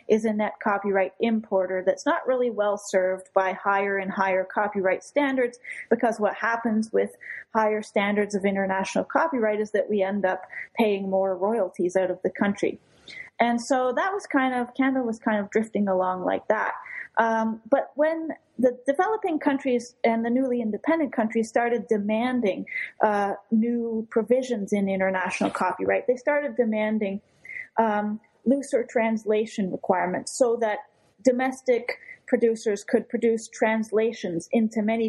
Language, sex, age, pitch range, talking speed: English, female, 30-49, 200-240 Hz, 145 wpm